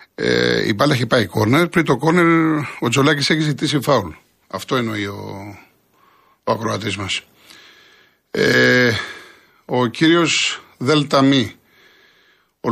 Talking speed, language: 120 wpm, Greek